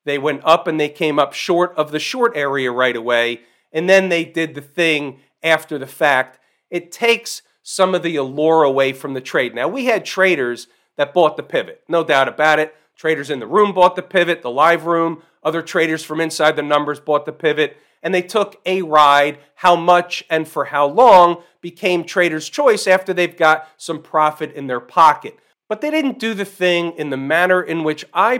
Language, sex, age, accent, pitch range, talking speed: English, male, 40-59, American, 155-185 Hz, 205 wpm